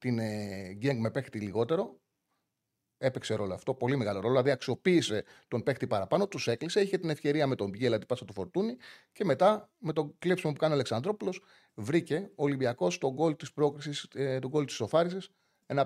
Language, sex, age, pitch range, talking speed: Greek, male, 30-49, 120-170 Hz, 180 wpm